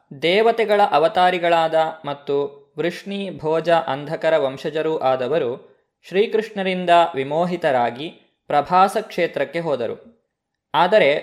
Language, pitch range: Kannada, 155-200 Hz